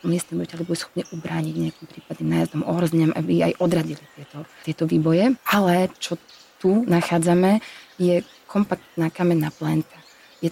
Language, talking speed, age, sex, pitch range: Slovak, 145 wpm, 20-39, female, 160-180 Hz